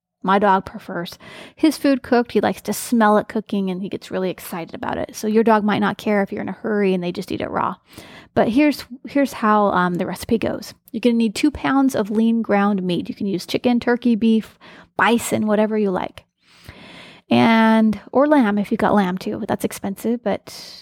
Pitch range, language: 190-235 Hz, English